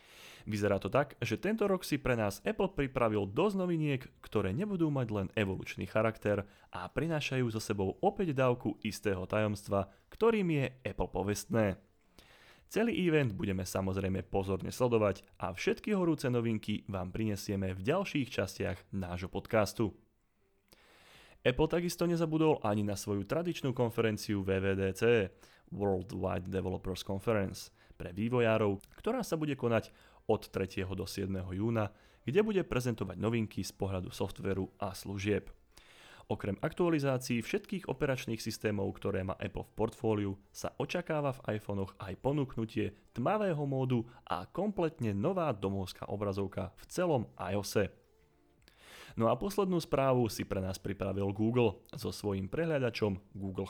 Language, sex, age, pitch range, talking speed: Slovak, male, 30-49, 95-130 Hz, 135 wpm